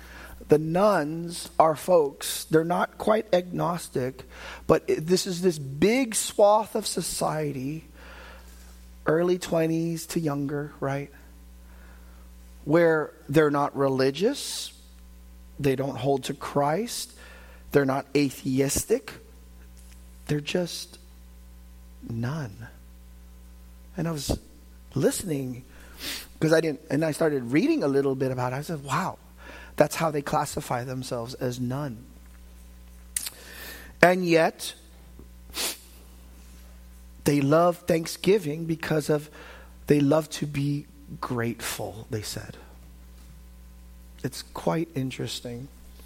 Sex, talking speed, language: male, 105 wpm, English